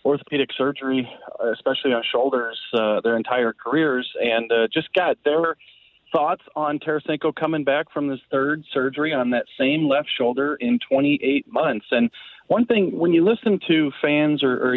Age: 30-49